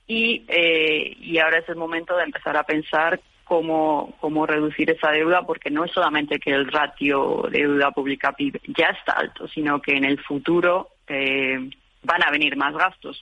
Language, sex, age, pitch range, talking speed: Spanish, female, 70-89, 150-170 Hz, 185 wpm